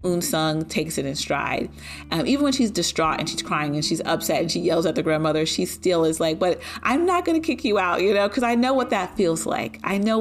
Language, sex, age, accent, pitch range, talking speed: English, female, 30-49, American, 155-205 Hz, 265 wpm